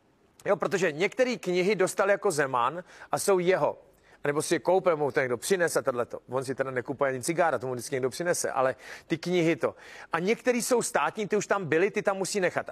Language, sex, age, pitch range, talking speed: Czech, male, 40-59, 145-185 Hz, 215 wpm